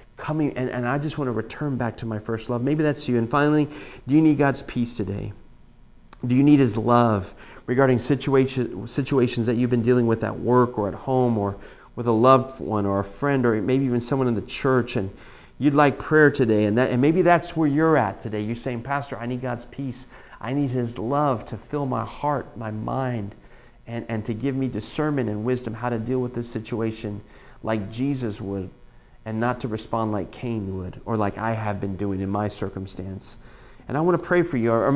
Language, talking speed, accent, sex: English, 220 wpm, American, male